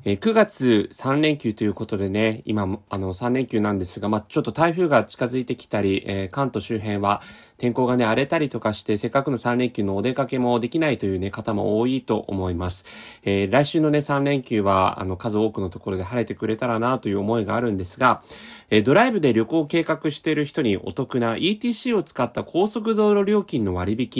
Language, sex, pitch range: Japanese, male, 110-160 Hz